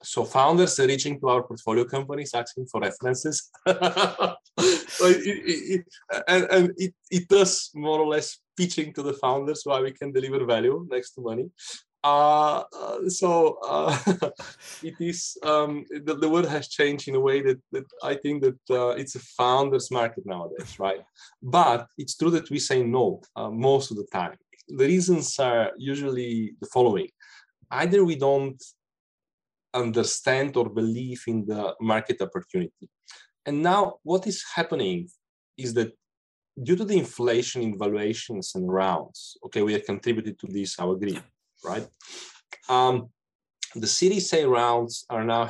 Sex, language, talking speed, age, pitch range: male, Romanian, 150 wpm, 20-39, 120-180 Hz